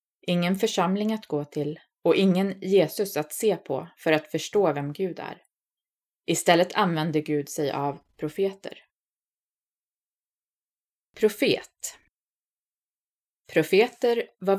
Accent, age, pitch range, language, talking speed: native, 20-39, 155-210 Hz, Swedish, 105 wpm